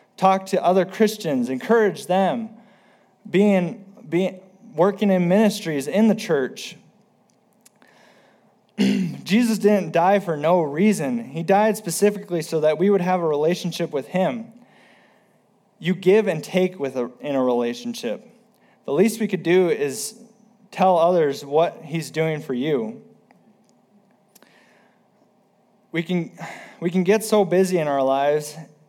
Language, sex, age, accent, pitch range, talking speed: English, male, 20-39, American, 160-205 Hz, 135 wpm